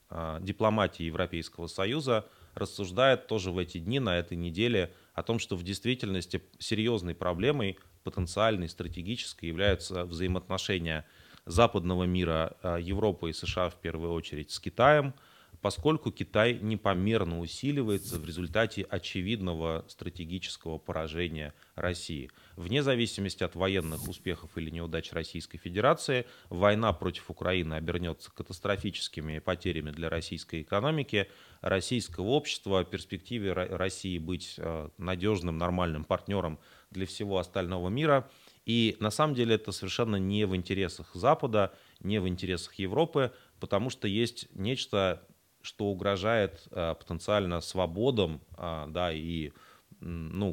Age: 30-49